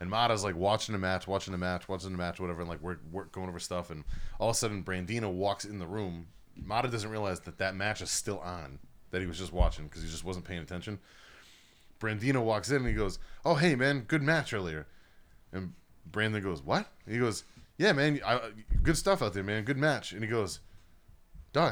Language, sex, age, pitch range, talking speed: English, male, 30-49, 100-150 Hz, 220 wpm